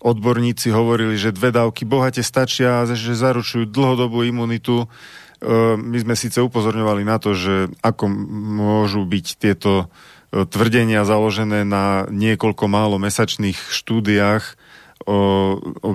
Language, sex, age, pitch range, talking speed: Slovak, male, 40-59, 100-115 Hz, 115 wpm